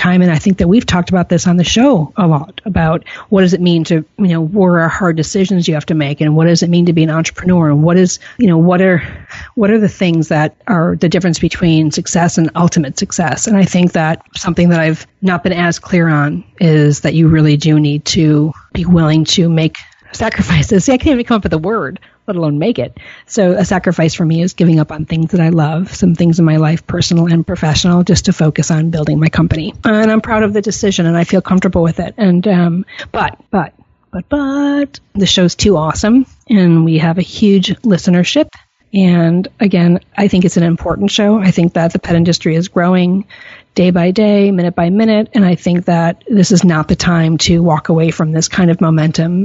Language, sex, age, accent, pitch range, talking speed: English, female, 40-59, American, 165-195 Hz, 230 wpm